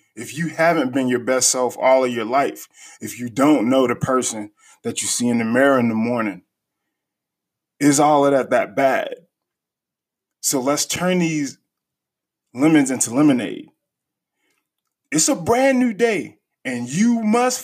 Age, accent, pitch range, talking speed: 20-39, American, 115-155 Hz, 160 wpm